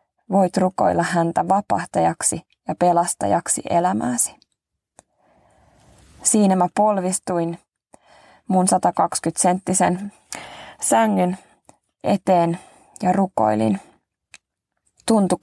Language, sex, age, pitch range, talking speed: Finnish, female, 20-39, 170-190 Hz, 65 wpm